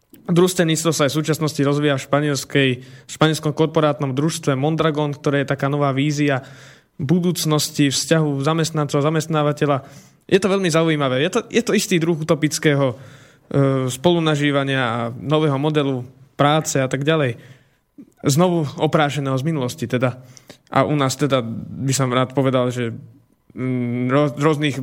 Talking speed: 140 wpm